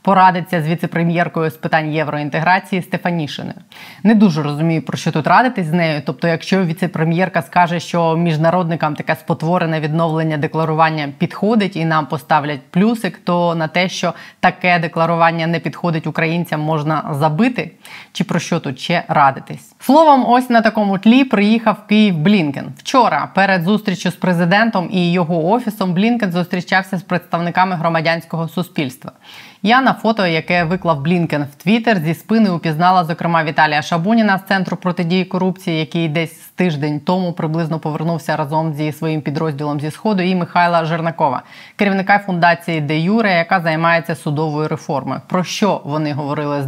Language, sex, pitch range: Ukrainian, female, 155-185 Hz